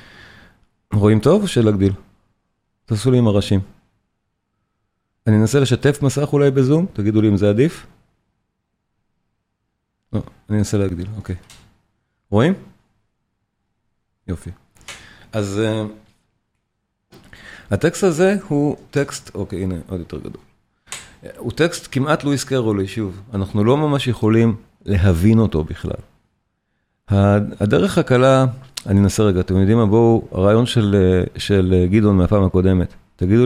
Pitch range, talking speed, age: 95-120 Hz, 120 wpm, 40-59